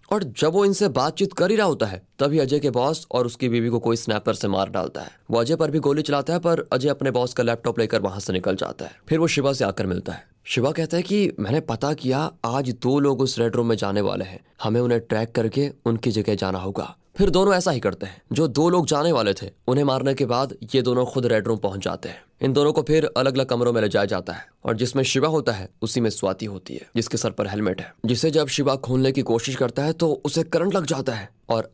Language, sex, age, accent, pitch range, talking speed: Hindi, male, 20-39, native, 110-140 Hz, 265 wpm